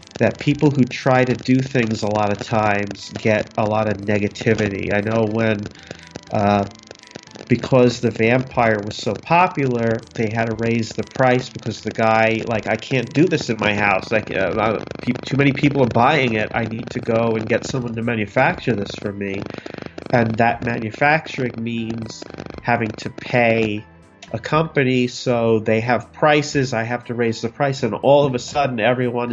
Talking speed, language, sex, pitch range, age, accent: 180 wpm, English, male, 110-140 Hz, 40-59, American